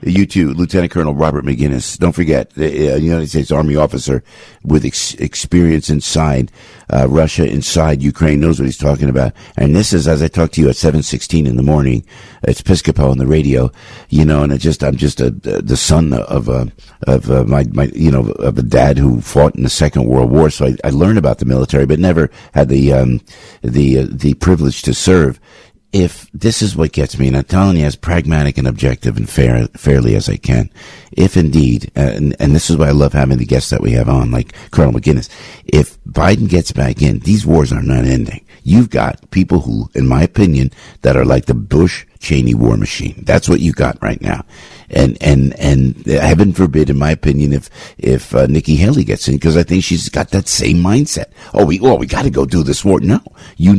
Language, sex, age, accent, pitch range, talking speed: English, male, 60-79, American, 65-80 Hz, 220 wpm